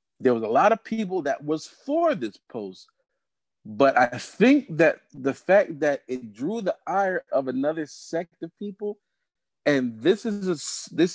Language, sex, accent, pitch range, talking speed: English, male, American, 120-185 Hz, 170 wpm